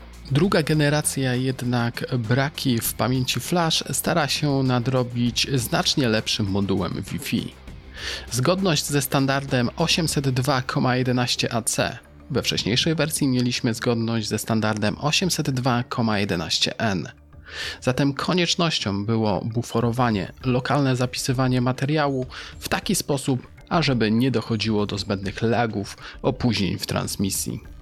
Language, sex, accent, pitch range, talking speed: Polish, male, native, 105-140 Hz, 95 wpm